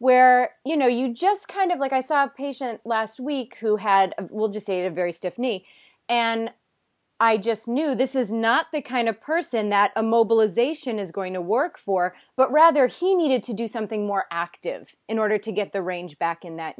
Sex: female